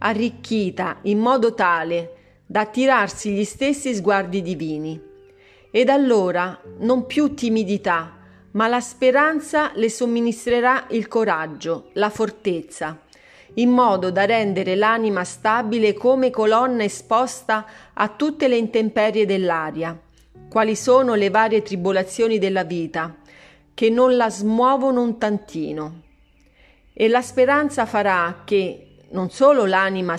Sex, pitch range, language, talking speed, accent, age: female, 180-245 Hz, Italian, 115 wpm, native, 40-59